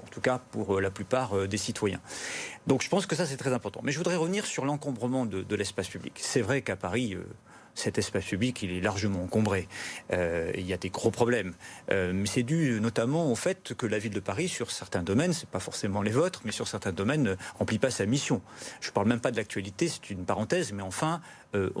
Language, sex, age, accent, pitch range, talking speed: French, male, 40-59, French, 105-145 Hz, 235 wpm